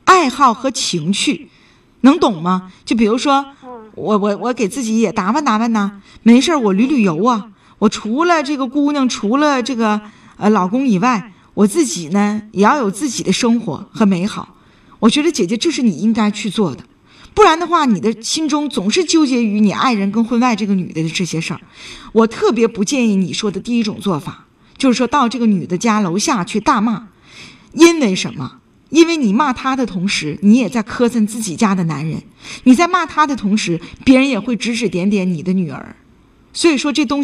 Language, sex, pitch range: Chinese, female, 205-280 Hz